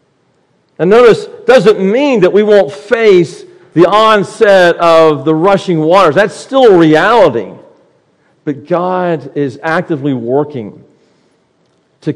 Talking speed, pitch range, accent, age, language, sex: 115 wpm, 155-205 Hz, American, 50-69, English, male